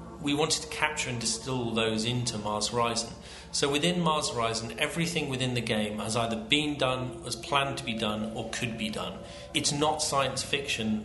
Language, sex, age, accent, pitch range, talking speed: English, male, 40-59, British, 115-140 Hz, 190 wpm